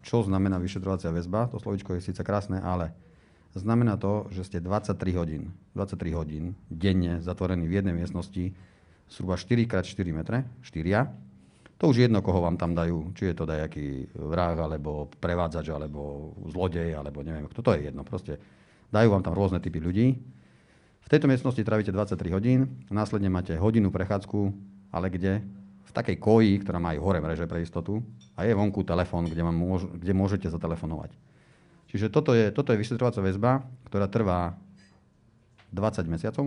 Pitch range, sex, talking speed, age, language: 85-105 Hz, male, 160 wpm, 40-59, Slovak